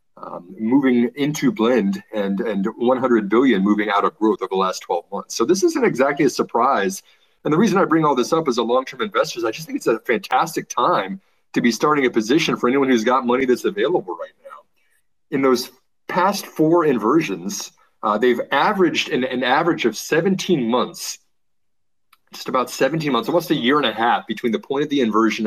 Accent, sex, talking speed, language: American, male, 200 wpm, English